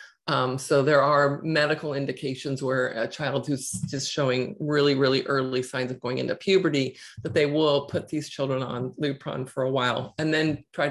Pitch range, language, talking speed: 135-155 Hz, English, 185 wpm